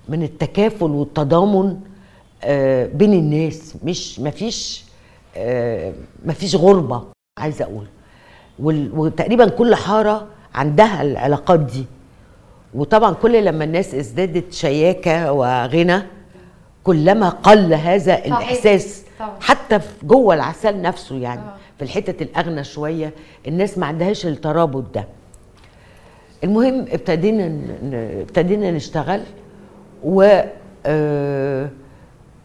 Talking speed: 90 wpm